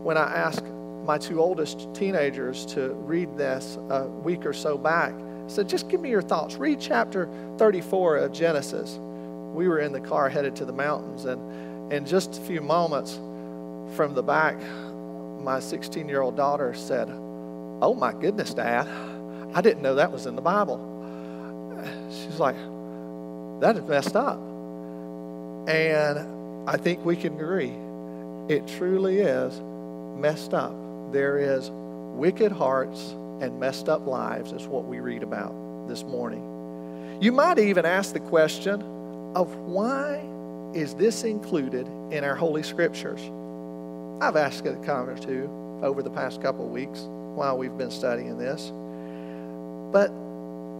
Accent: American